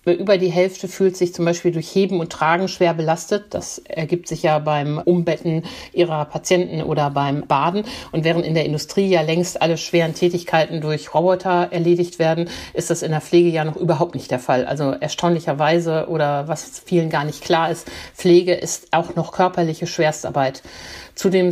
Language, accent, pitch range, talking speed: German, German, 155-175 Hz, 180 wpm